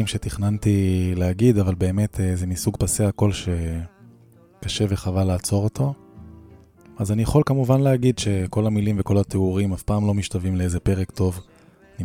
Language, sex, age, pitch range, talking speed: Hebrew, male, 20-39, 95-110 Hz, 145 wpm